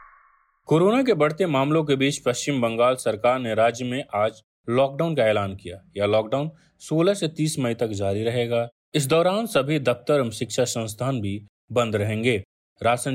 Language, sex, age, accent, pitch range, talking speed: Hindi, male, 30-49, native, 110-150 Hz, 170 wpm